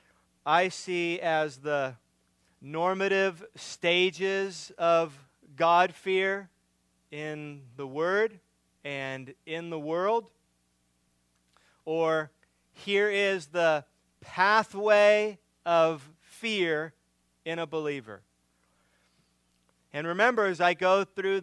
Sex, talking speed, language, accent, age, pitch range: male, 85 wpm, English, American, 40-59, 135-210 Hz